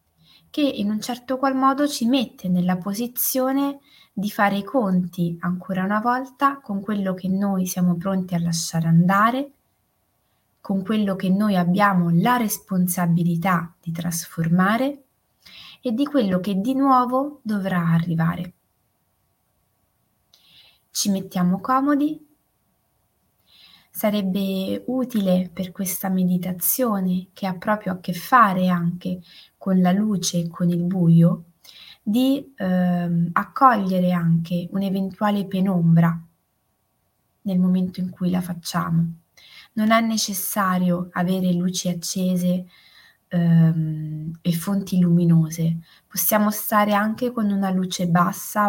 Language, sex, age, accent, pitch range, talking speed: Italian, female, 20-39, native, 175-210 Hz, 115 wpm